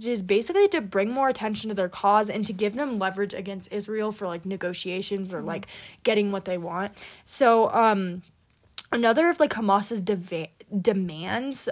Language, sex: English, female